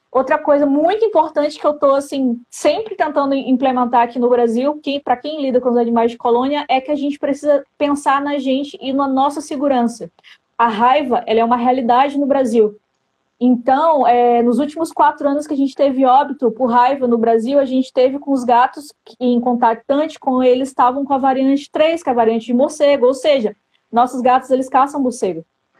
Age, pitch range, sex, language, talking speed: 20-39, 240-285 Hz, female, Portuguese, 200 wpm